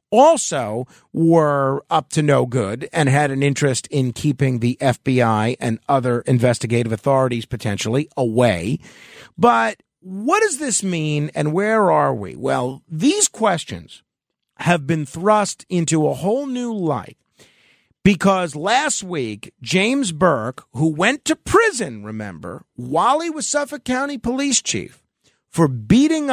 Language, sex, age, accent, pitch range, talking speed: English, male, 50-69, American, 135-220 Hz, 135 wpm